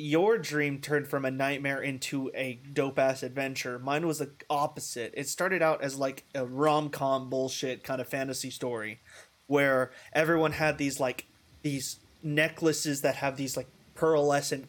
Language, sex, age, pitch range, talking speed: English, male, 20-39, 130-155 Hz, 165 wpm